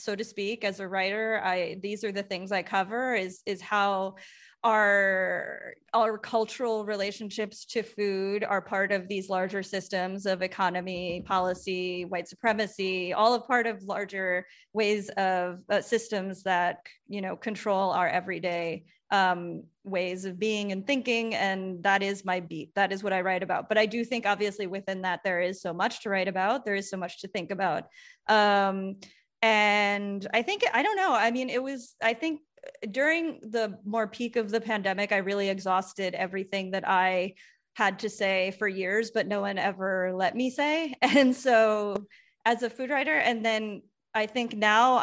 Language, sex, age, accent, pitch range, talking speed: English, female, 20-39, American, 190-220 Hz, 175 wpm